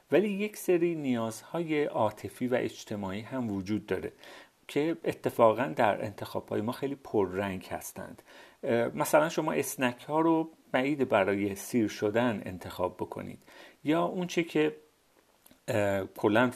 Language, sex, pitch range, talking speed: Persian, male, 105-140 Hz, 120 wpm